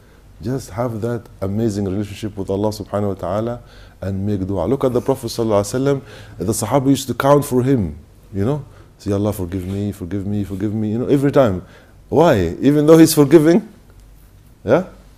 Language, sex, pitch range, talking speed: English, male, 100-120 Hz, 185 wpm